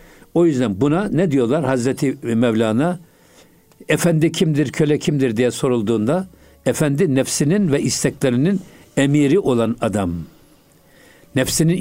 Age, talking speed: 60-79, 105 wpm